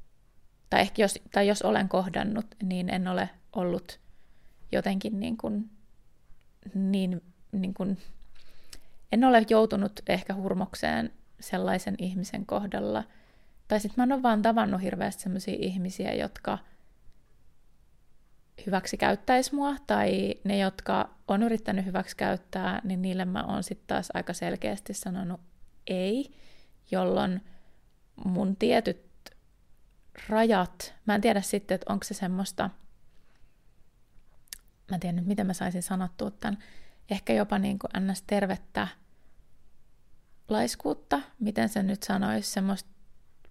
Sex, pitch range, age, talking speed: female, 185-215 Hz, 20-39, 120 wpm